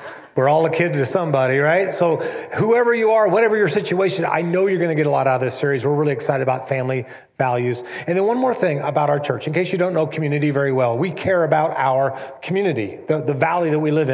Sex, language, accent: male, English, American